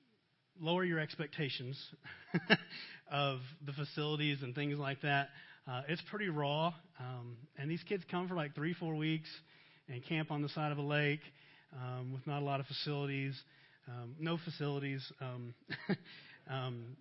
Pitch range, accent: 130-155 Hz, American